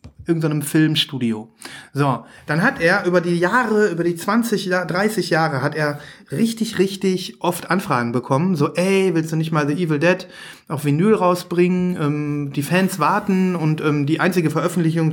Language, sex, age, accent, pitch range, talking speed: German, male, 30-49, German, 150-190 Hz, 175 wpm